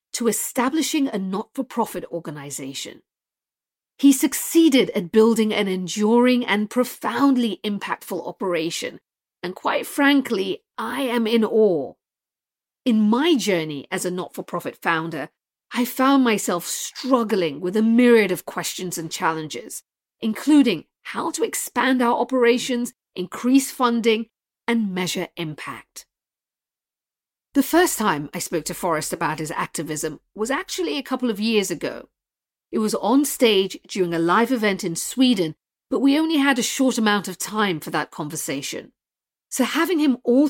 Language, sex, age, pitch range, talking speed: English, female, 40-59, 180-260 Hz, 140 wpm